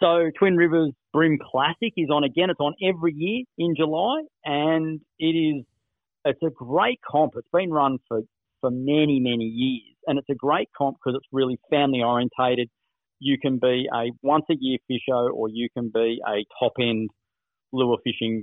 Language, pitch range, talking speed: English, 115-140 Hz, 175 wpm